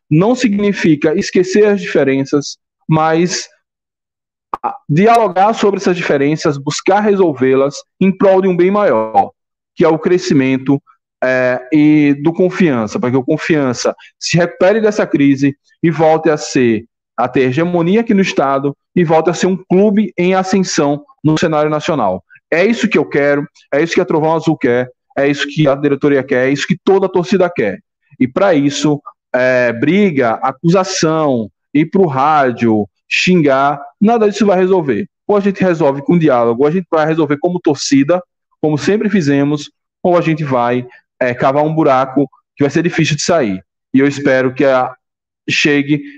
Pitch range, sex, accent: 140-190 Hz, male, Brazilian